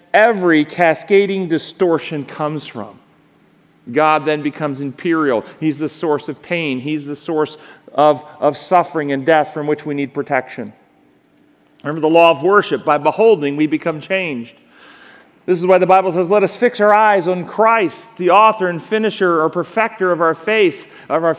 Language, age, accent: English, 40-59, American